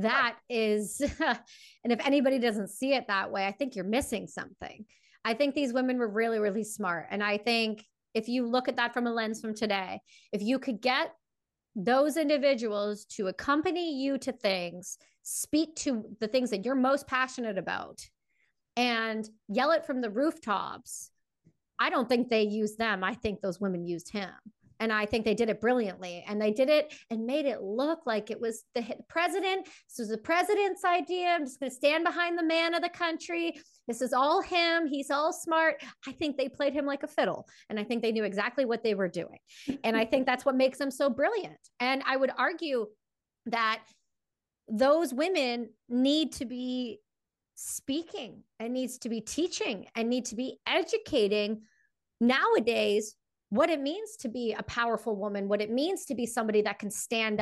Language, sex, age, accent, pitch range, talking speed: English, female, 30-49, American, 220-290 Hz, 190 wpm